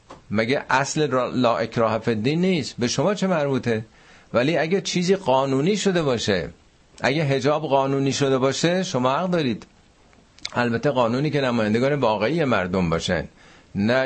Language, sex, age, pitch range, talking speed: Persian, male, 50-69, 105-135 Hz, 135 wpm